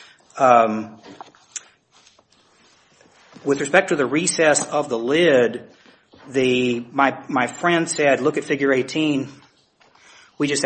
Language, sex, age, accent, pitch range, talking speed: English, male, 40-59, American, 115-140 Hz, 115 wpm